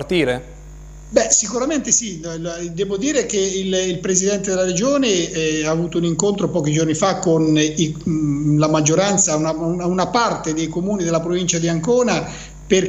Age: 50-69